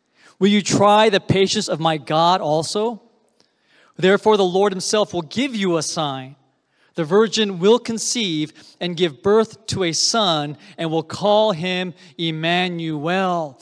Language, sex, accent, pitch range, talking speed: English, male, American, 160-215 Hz, 145 wpm